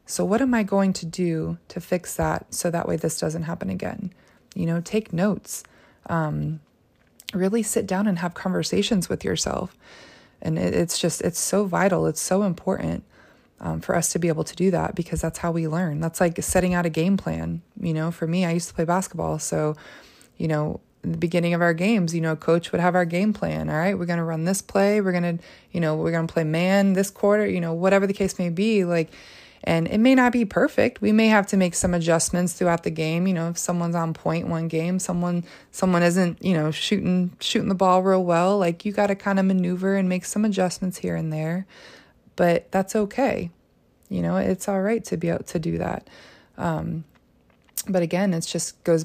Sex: female